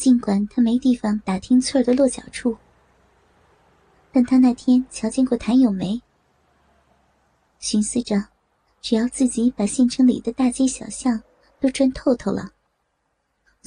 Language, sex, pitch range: Chinese, male, 215-255 Hz